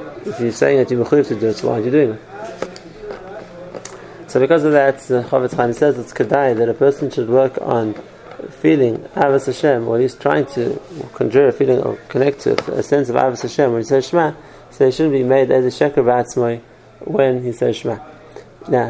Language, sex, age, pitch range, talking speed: English, male, 30-49, 120-140 Hz, 210 wpm